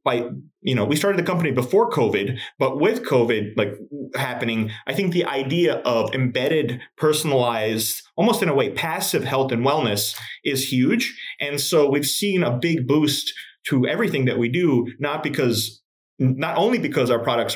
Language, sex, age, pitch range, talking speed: English, male, 30-49, 120-160 Hz, 170 wpm